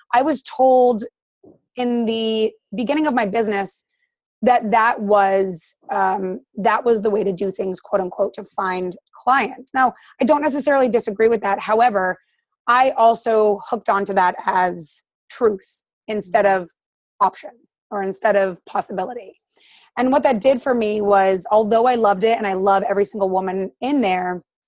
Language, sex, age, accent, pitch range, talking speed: English, female, 30-49, American, 195-245 Hz, 160 wpm